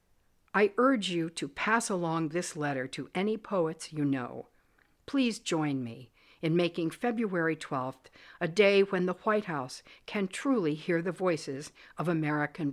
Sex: female